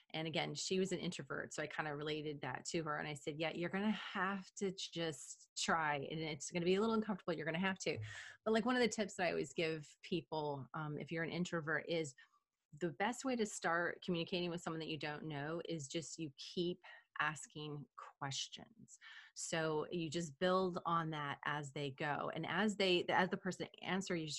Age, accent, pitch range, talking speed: 30-49, American, 150-180 Hz, 210 wpm